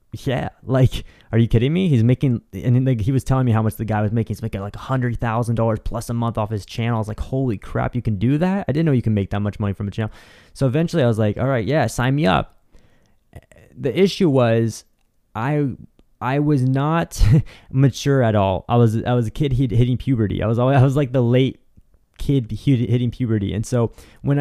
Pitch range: 105-130 Hz